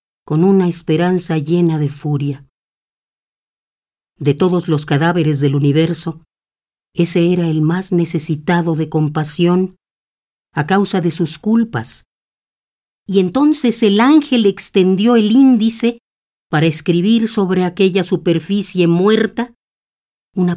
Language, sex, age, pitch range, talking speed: Spanish, female, 40-59, 160-195 Hz, 110 wpm